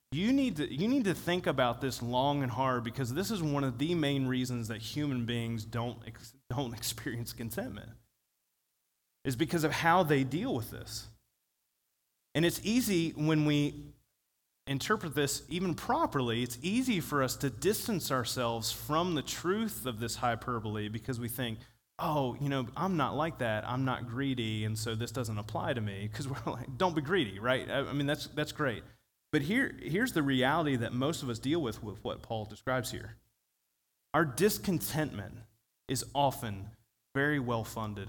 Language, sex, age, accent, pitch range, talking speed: English, male, 30-49, American, 120-155 Hz, 175 wpm